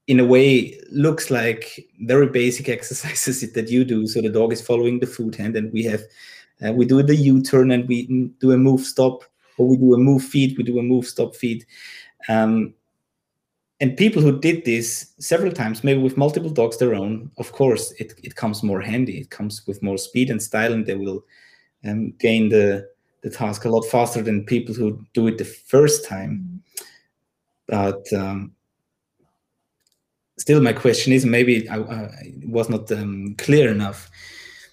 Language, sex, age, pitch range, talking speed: German, male, 30-49, 110-135 Hz, 185 wpm